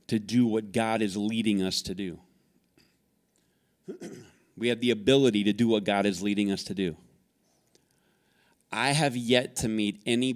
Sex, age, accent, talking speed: male, 20-39, American, 160 wpm